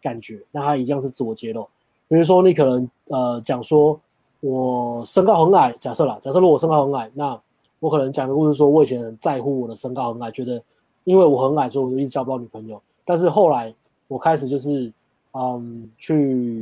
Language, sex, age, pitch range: Chinese, male, 20-39, 125-150 Hz